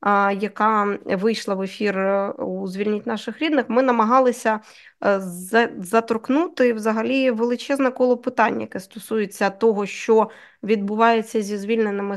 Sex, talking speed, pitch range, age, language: female, 105 wpm, 195-225 Hz, 20-39, Ukrainian